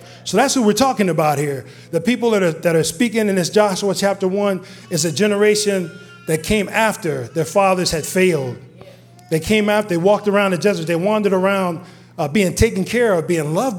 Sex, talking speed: male, 205 wpm